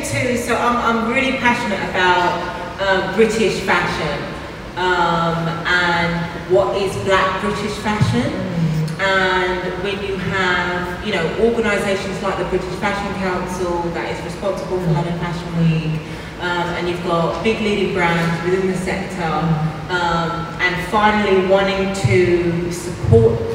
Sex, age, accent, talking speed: female, 30-49, British, 135 wpm